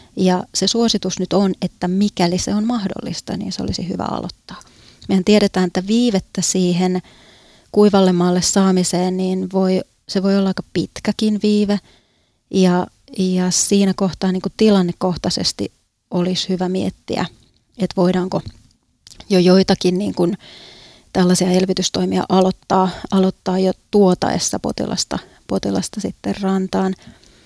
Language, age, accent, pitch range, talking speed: Finnish, 30-49, native, 185-195 Hz, 110 wpm